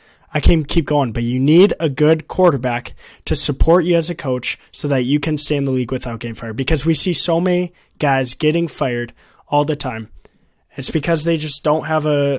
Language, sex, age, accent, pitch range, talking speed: English, male, 20-39, American, 135-170 Hz, 220 wpm